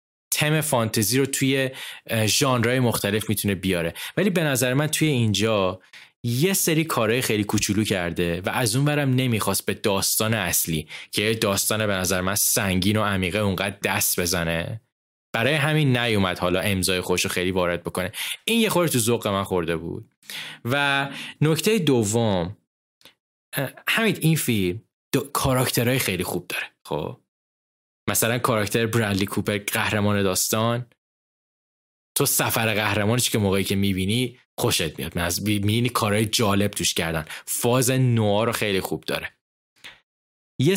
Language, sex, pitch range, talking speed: Persian, male, 95-125 Hz, 140 wpm